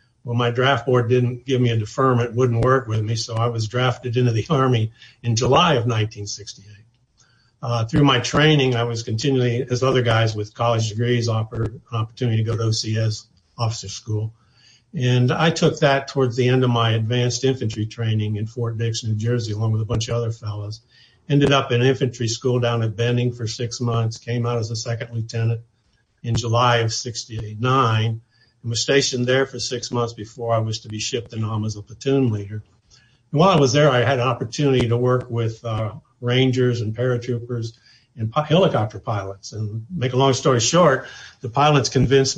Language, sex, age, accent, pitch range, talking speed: English, male, 60-79, American, 115-130 Hz, 200 wpm